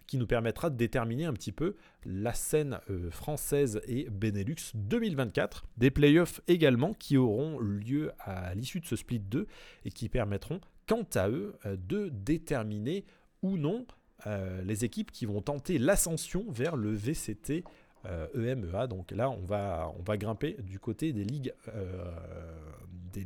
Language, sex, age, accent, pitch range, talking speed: French, male, 30-49, French, 105-155 Hz, 150 wpm